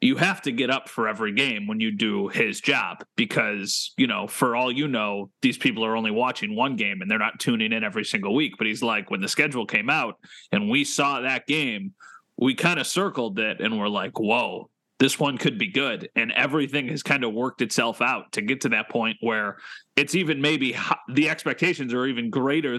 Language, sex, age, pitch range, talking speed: English, male, 30-49, 130-195 Hz, 220 wpm